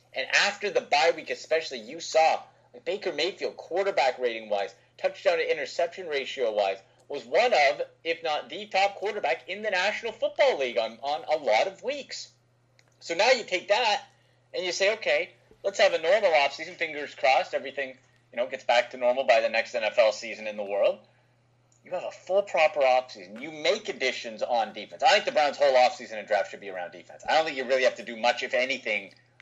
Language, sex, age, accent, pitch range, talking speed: English, male, 30-49, American, 125-200 Hz, 200 wpm